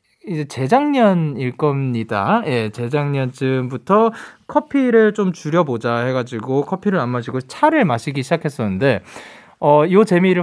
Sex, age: male, 20-39